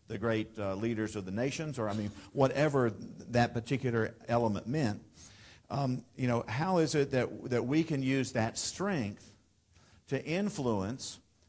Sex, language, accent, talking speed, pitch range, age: male, English, American, 160 wpm, 100-120 Hz, 50-69